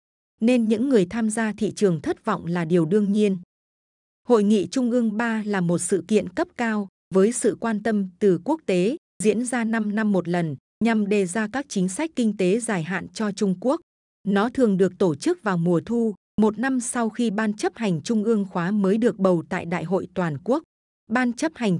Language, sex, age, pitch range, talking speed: Vietnamese, female, 20-39, 190-230 Hz, 215 wpm